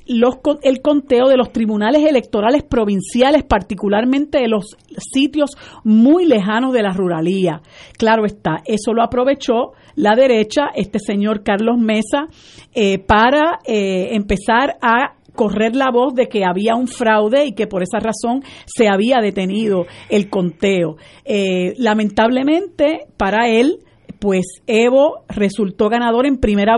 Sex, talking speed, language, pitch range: female, 135 wpm, Spanish, 205-255 Hz